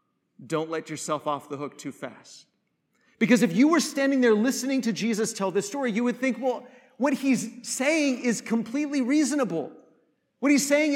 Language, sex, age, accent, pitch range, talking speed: English, male, 40-59, American, 205-265 Hz, 180 wpm